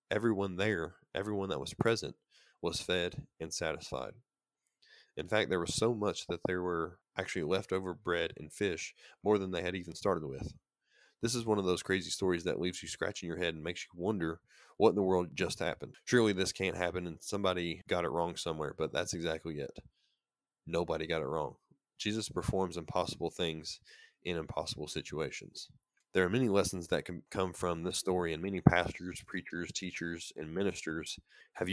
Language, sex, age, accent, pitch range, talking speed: English, male, 20-39, American, 85-100 Hz, 185 wpm